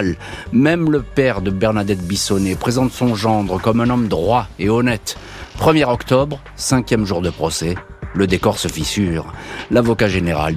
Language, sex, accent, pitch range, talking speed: French, male, French, 95-130 Hz, 155 wpm